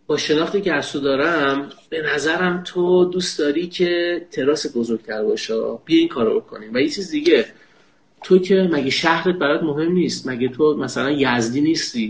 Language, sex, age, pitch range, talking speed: Persian, male, 30-49, 130-180 Hz, 175 wpm